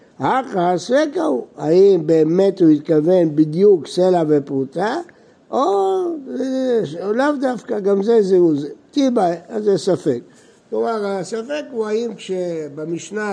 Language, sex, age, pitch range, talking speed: Hebrew, male, 60-79, 150-210 Hz, 115 wpm